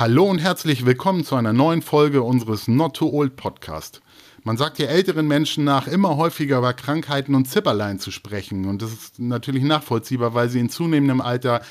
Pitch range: 115-145 Hz